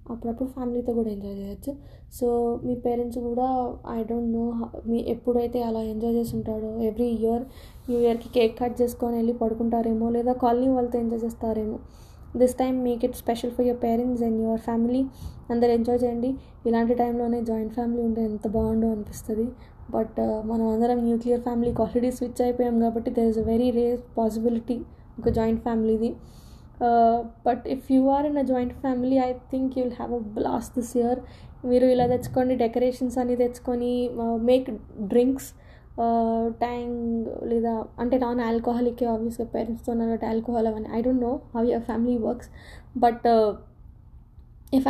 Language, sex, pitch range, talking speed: Telugu, female, 230-250 Hz, 155 wpm